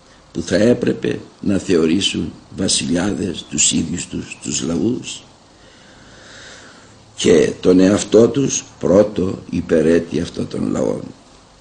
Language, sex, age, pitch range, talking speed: Greek, male, 60-79, 85-105 Hz, 105 wpm